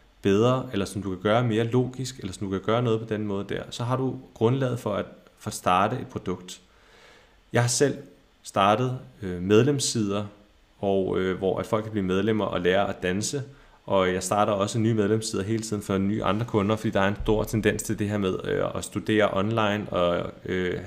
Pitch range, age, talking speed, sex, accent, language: 100-125 Hz, 30-49, 215 wpm, male, native, Danish